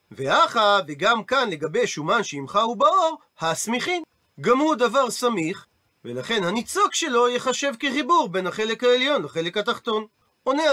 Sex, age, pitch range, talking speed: male, 40-59, 195-275 Hz, 135 wpm